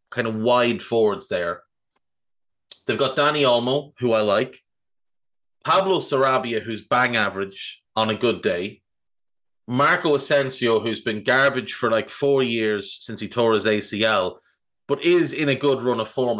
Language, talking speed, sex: English, 155 wpm, male